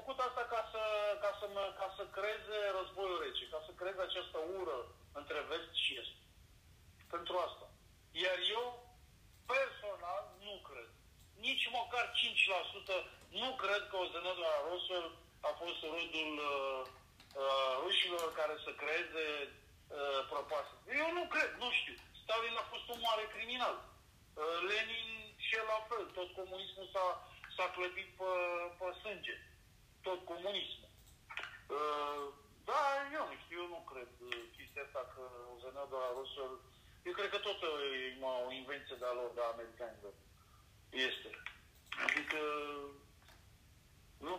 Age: 50-69